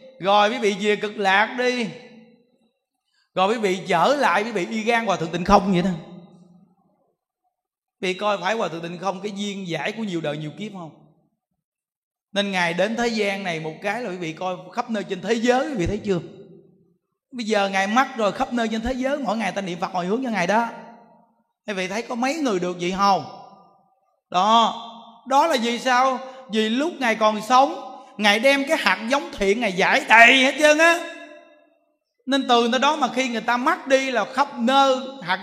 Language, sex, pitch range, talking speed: Vietnamese, male, 195-260 Hz, 210 wpm